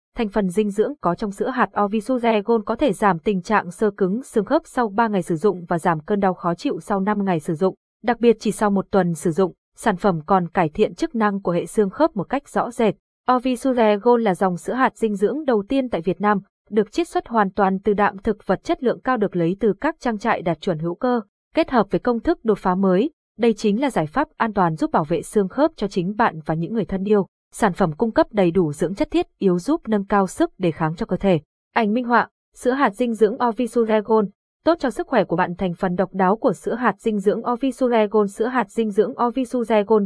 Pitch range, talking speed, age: 190-245 Hz, 250 wpm, 20-39